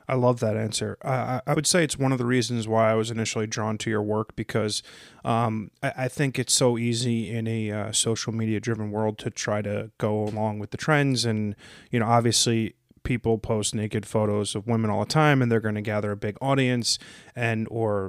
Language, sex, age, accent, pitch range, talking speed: English, male, 30-49, American, 105-120 Hz, 220 wpm